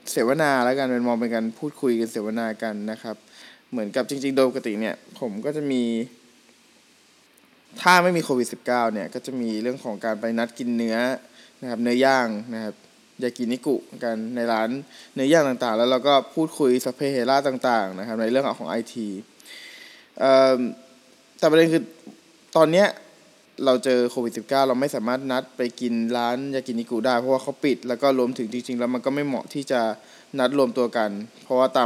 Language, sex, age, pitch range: Thai, male, 20-39, 115-140 Hz